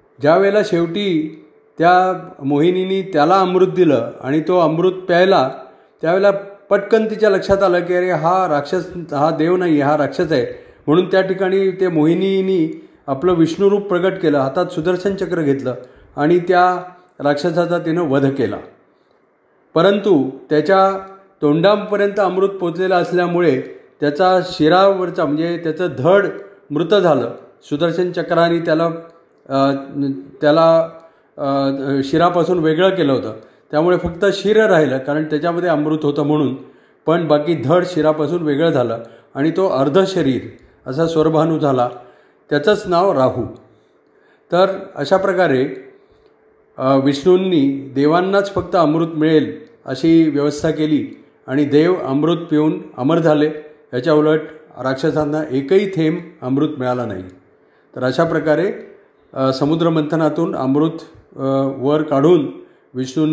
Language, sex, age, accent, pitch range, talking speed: Marathi, male, 40-59, native, 145-185 Hz, 120 wpm